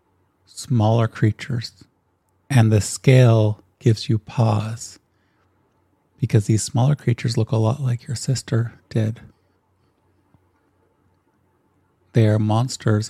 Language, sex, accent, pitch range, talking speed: English, male, American, 100-120 Hz, 100 wpm